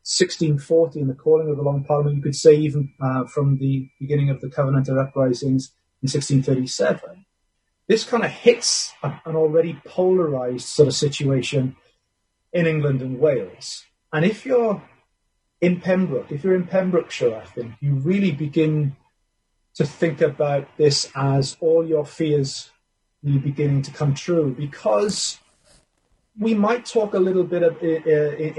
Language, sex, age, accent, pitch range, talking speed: English, male, 30-49, British, 140-170 Hz, 150 wpm